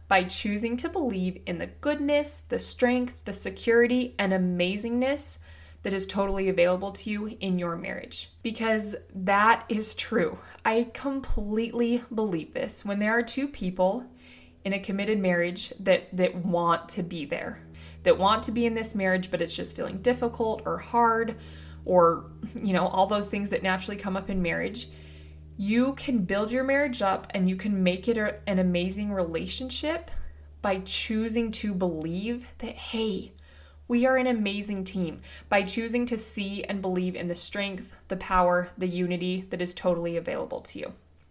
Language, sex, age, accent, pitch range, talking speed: English, female, 20-39, American, 180-230 Hz, 165 wpm